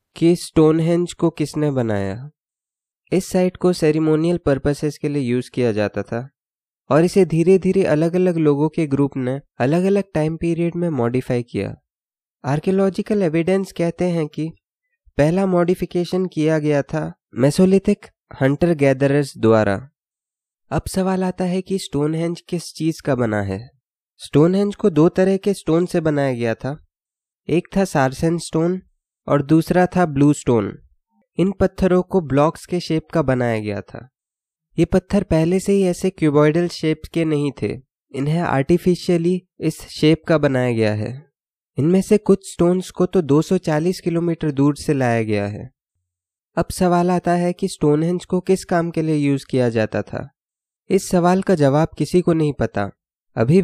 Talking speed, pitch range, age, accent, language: 160 wpm, 140-180 Hz, 20-39, native, Hindi